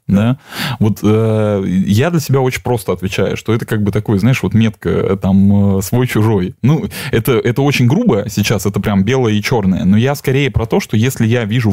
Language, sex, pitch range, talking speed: Russian, male, 100-125 Hz, 210 wpm